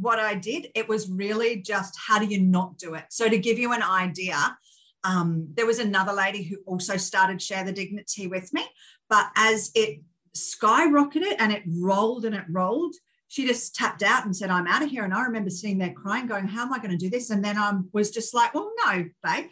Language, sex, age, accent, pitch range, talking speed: English, female, 40-59, Australian, 185-235 Hz, 230 wpm